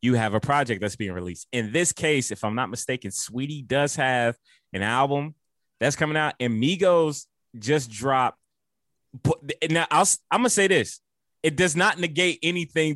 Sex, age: male, 20-39